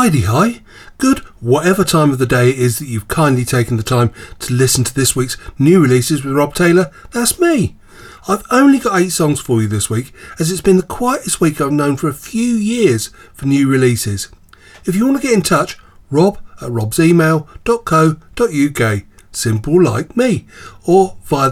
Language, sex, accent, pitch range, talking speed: English, male, British, 120-185 Hz, 185 wpm